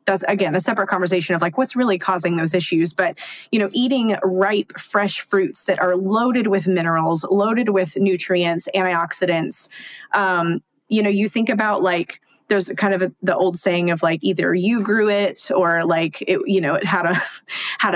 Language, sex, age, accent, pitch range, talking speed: English, female, 20-39, American, 175-205 Hz, 190 wpm